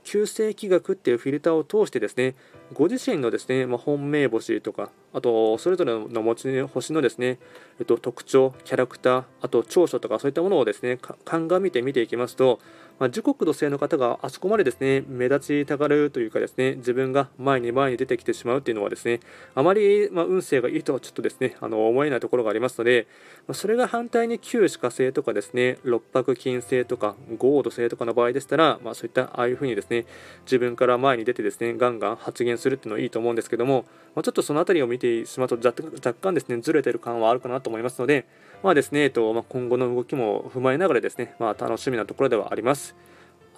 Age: 20-39